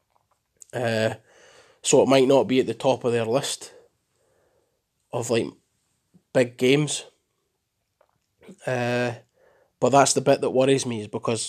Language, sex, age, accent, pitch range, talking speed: English, male, 20-39, British, 110-130 Hz, 135 wpm